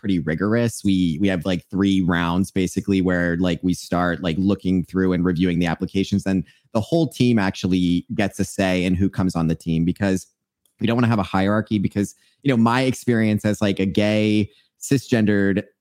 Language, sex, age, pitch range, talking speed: English, male, 30-49, 90-110 Hz, 195 wpm